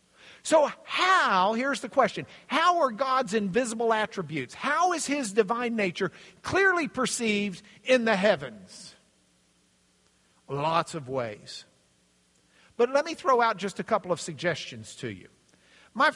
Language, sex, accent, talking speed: English, male, American, 135 wpm